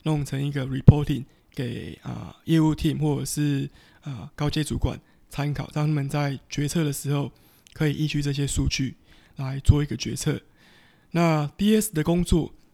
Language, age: Chinese, 20-39